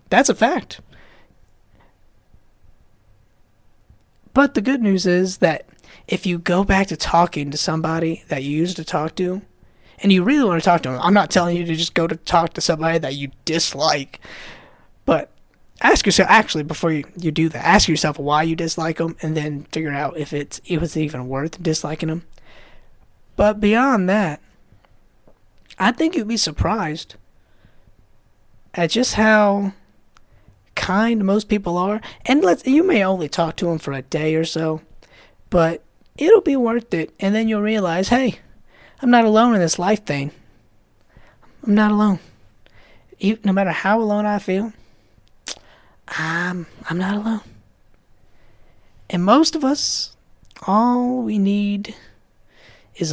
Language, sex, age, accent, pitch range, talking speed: English, male, 20-39, American, 140-205 Hz, 155 wpm